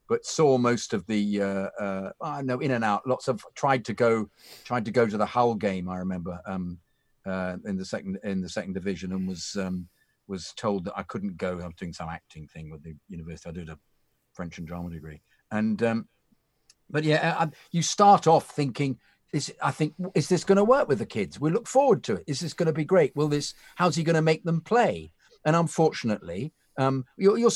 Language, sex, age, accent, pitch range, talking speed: English, male, 50-69, British, 105-155 Hz, 230 wpm